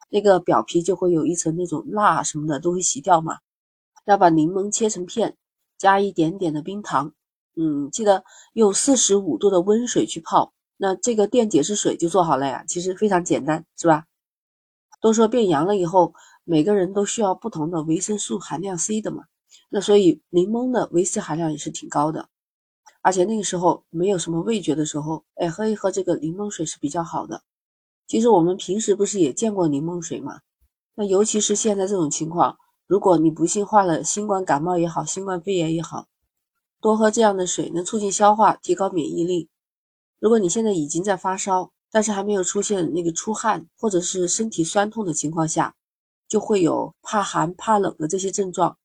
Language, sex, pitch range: Chinese, female, 170-215 Hz